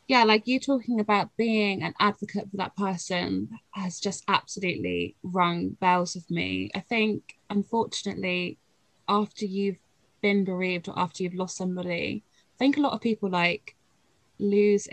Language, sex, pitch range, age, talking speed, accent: English, female, 175-215 Hz, 20-39, 155 wpm, British